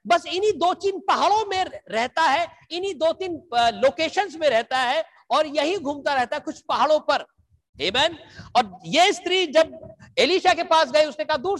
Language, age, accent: Hindi, 50-69, native